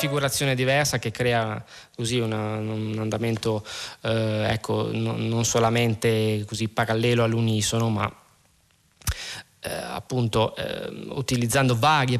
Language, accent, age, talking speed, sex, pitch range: Italian, native, 20-39, 110 wpm, male, 115-145 Hz